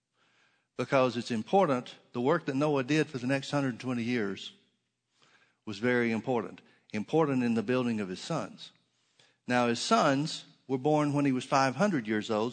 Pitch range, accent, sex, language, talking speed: 120-145 Hz, American, male, English, 165 wpm